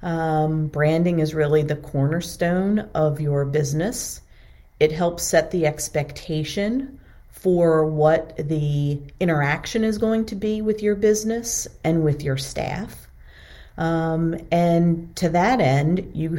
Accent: American